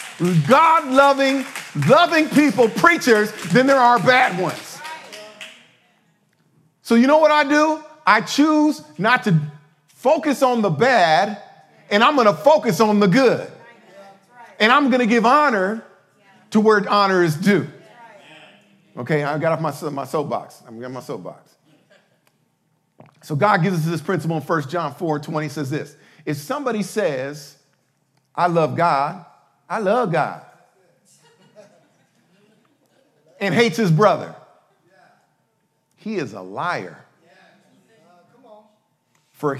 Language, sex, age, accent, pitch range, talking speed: English, male, 50-69, American, 155-240 Hz, 130 wpm